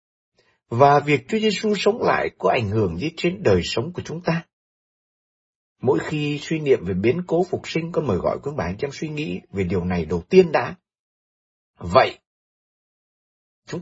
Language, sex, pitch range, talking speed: Vietnamese, male, 130-205 Hz, 185 wpm